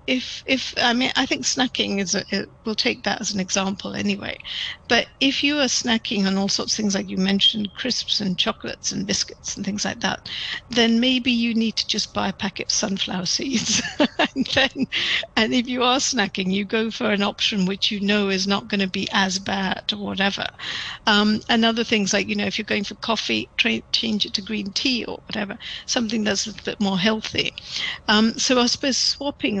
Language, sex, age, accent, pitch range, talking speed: English, female, 50-69, British, 200-245 Hz, 215 wpm